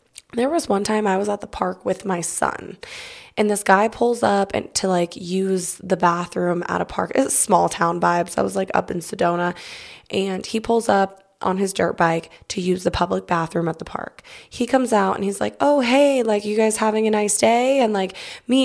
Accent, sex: American, female